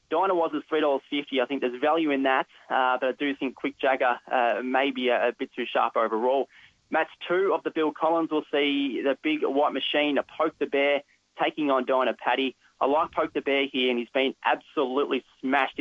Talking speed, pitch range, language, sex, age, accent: 200 wpm, 125-150 Hz, English, male, 20-39, Australian